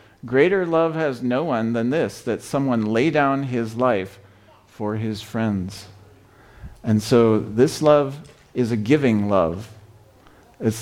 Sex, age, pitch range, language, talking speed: male, 50-69, 100-120 Hz, English, 140 wpm